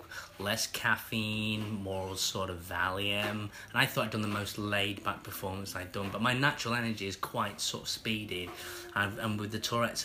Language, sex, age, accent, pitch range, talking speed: English, male, 20-39, British, 105-140 Hz, 185 wpm